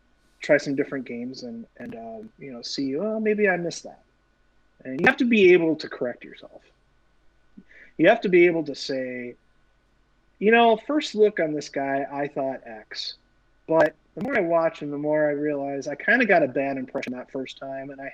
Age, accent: 30-49, American